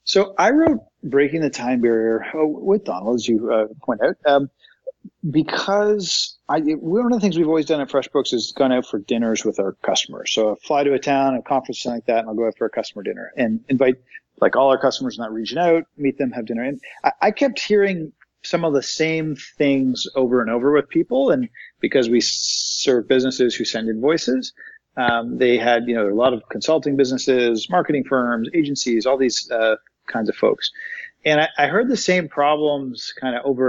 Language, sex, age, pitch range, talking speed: English, male, 40-59, 120-155 Hz, 210 wpm